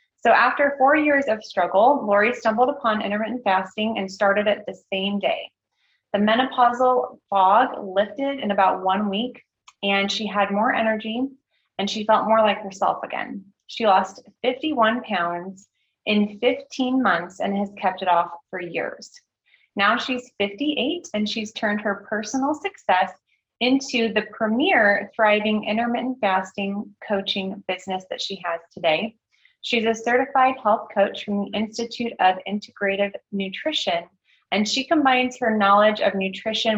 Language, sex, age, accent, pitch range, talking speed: English, female, 30-49, American, 200-245 Hz, 145 wpm